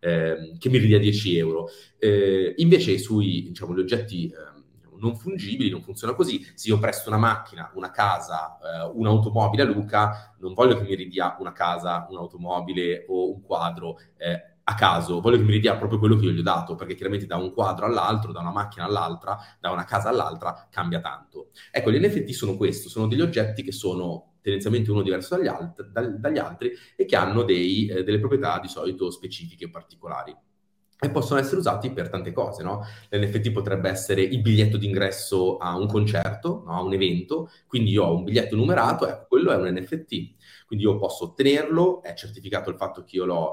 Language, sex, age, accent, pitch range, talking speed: Italian, male, 30-49, native, 90-120 Hz, 190 wpm